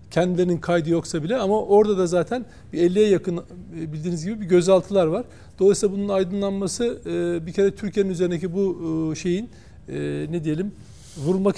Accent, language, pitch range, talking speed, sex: native, Turkish, 160-200 Hz, 145 wpm, male